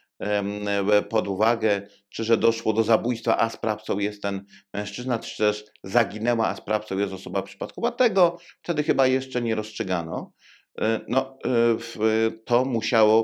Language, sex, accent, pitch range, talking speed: Polish, male, native, 110-130 Hz, 125 wpm